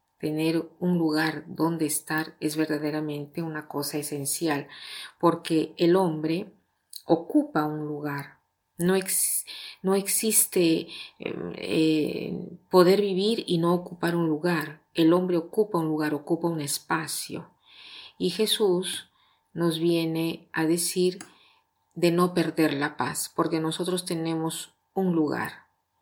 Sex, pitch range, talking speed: female, 155-175 Hz, 120 wpm